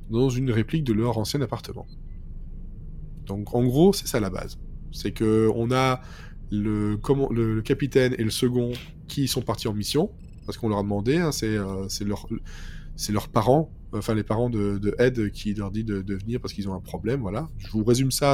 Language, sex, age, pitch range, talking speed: French, male, 20-39, 100-125 Hz, 210 wpm